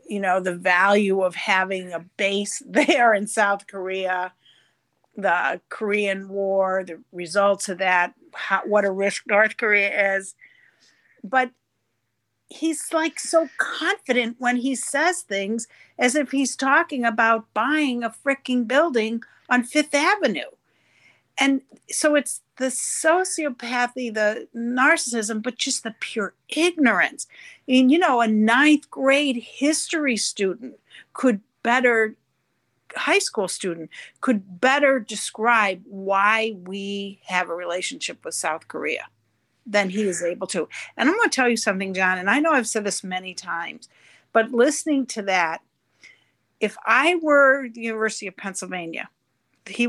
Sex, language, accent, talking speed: female, English, American, 140 wpm